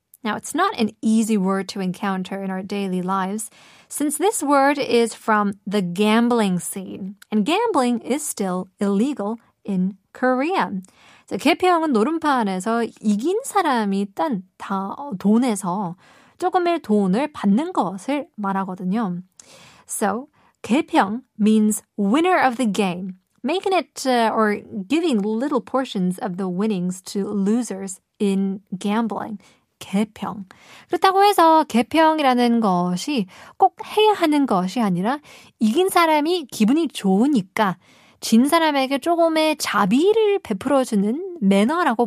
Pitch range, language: 200-275 Hz, Korean